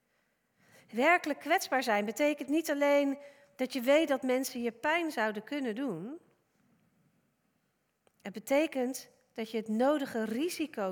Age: 40-59